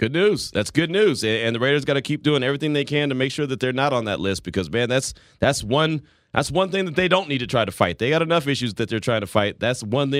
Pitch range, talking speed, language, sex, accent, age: 115-145 Hz, 300 wpm, English, male, American, 30-49